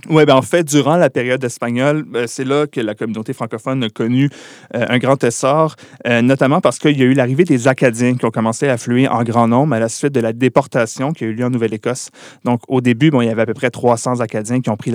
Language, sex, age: French, male, 30-49